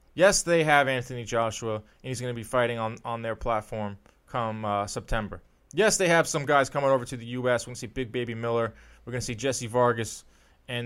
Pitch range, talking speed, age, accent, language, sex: 120-155 Hz, 230 wpm, 20-39, American, English, male